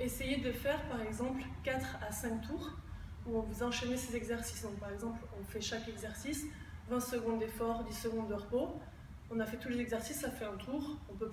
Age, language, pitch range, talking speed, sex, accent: 20-39, French, 225-260 Hz, 215 wpm, female, French